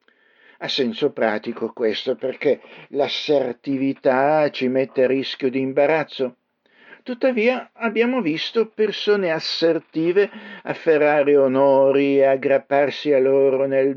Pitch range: 135-205 Hz